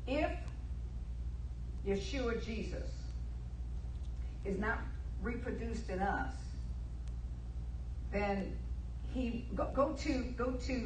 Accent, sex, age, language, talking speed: American, female, 50-69, English, 90 wpm